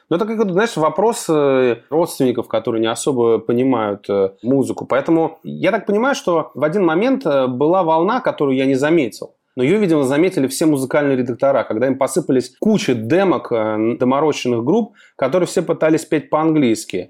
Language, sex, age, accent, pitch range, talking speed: Russian, male, 30-49, native, 115-155 Hz, 150 wpm